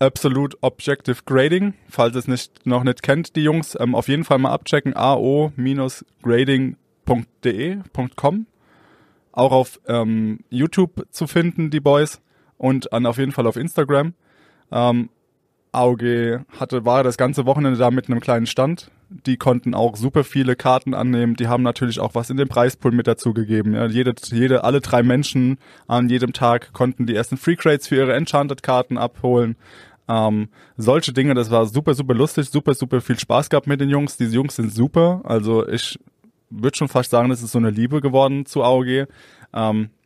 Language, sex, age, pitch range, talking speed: German, male, 20-39, 120-140 Hz, 175 wpm